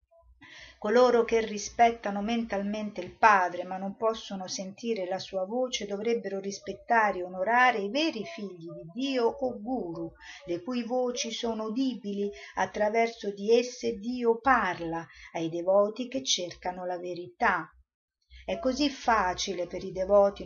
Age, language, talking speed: 50-69, Italian, 135 wpm